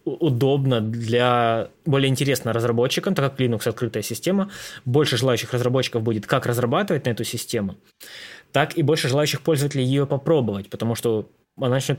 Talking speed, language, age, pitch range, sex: 150 wpm, Russian, 20-39, 115-145 Hz, male